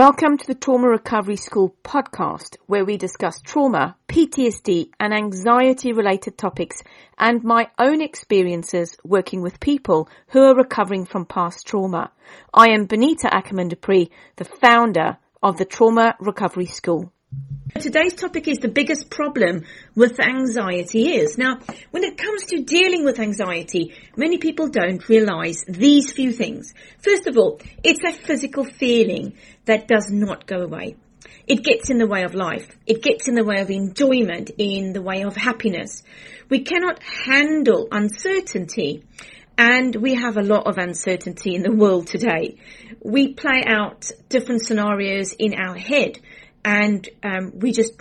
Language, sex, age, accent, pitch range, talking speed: English, female, 40-59, British, 195-270 Hz, 150 wpm